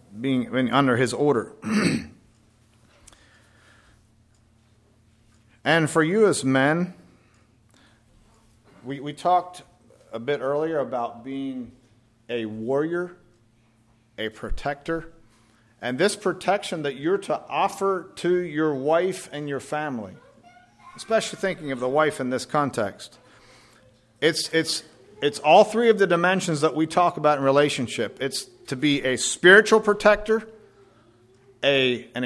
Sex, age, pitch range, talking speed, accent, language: male, 50-69, 115-175 Hz, 115 wpm, American, English